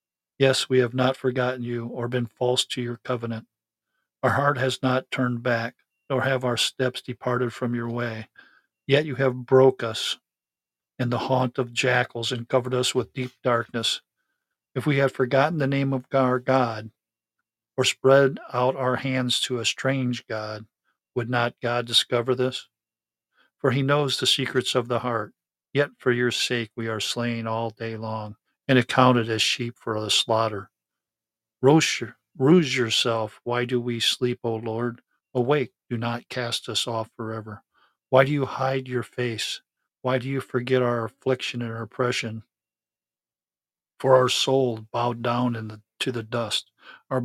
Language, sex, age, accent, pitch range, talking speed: English, male, 50-69, American, 115-130 Hz, 165 wpm